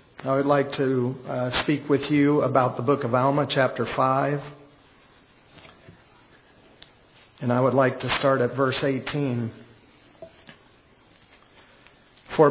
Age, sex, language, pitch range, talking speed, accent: 50-69, male, English, 130-160 Hz, 120 wpm, American